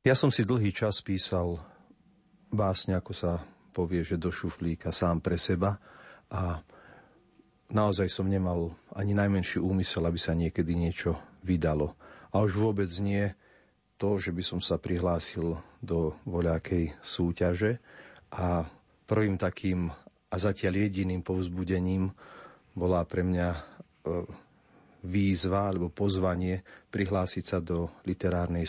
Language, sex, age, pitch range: Slovak, male, 40-59, 85-95 Hz